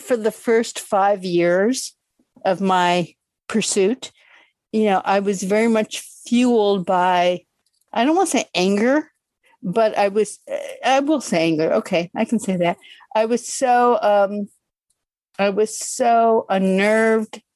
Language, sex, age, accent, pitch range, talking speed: English, female, 50-69, American, 185-225 Hz, 145 wpm